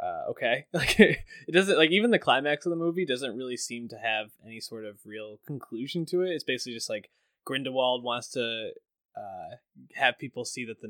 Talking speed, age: 200 wpm, 20-39